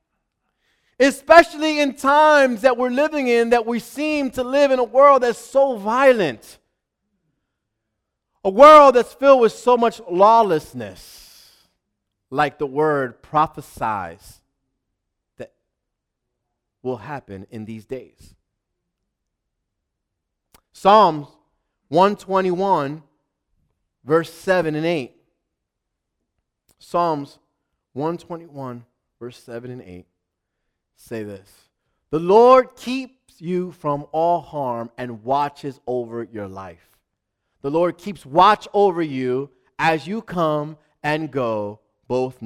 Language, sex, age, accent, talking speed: English, male, 30-49, American, 105 wpm